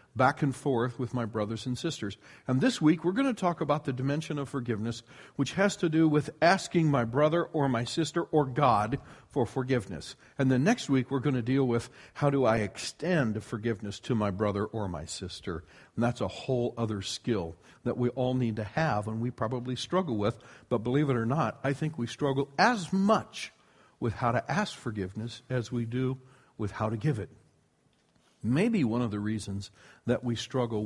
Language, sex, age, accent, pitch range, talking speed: English, male, 50-69, American, 110-145 Hz, 200 wpm